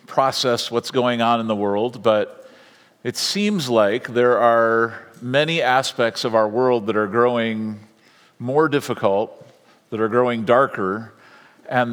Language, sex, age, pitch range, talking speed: English, male, 50-69, 120-160 Hz, 140 wpm